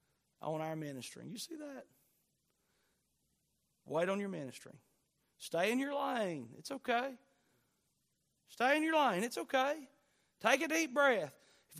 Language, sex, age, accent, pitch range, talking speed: English, male, 40-59, American, 155-255 Hz, 135 wpm